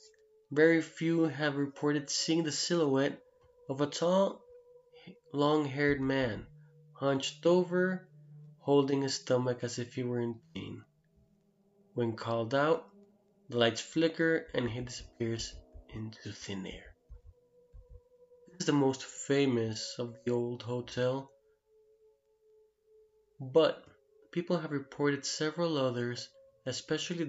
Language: English